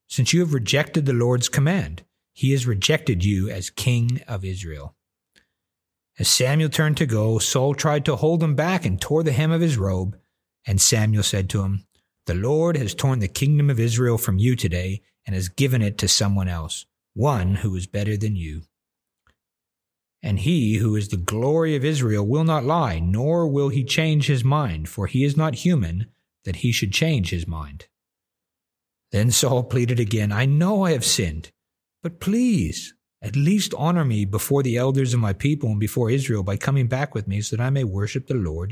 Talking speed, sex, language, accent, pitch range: 195 wpm, male, English, American, 100-140 Hz